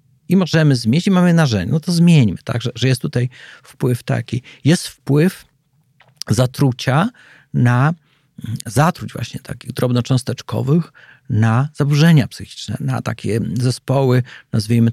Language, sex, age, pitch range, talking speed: Polish, male, 40-59, 125-150 Hz, 125 wpm